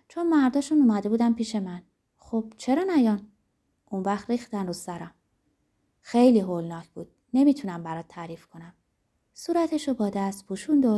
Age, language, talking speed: 20-39, Persian, 150 wpm